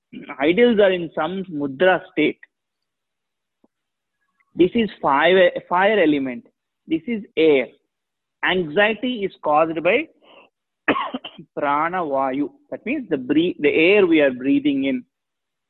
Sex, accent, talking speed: male, Indian, 115 wpm